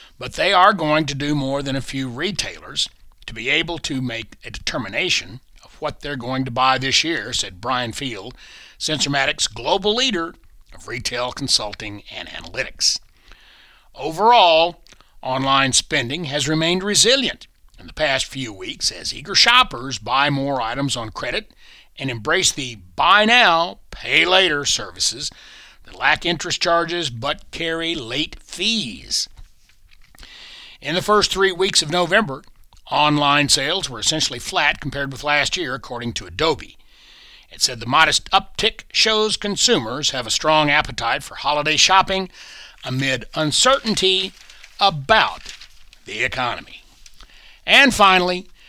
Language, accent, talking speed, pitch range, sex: English, American, 140 wpm, 135-195 Hz, male